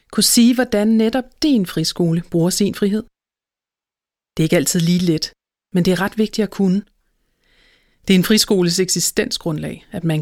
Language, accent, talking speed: Danish, native, 170 wpm